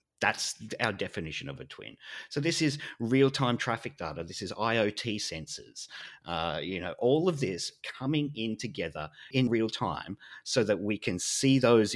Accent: Australian